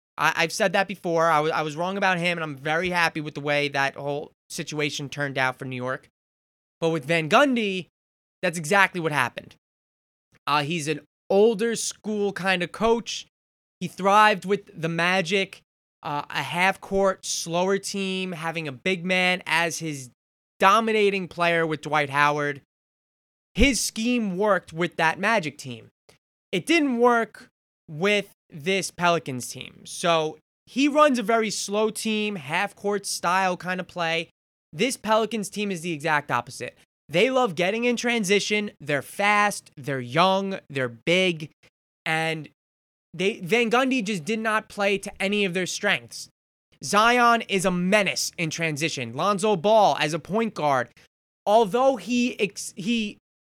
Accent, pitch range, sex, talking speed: American, 150-205 Hz, male, 150 wpm